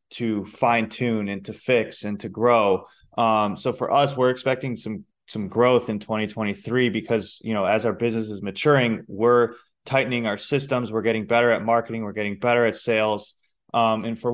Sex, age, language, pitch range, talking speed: male, 20-39, English, 105-120 Hz, 190 wpm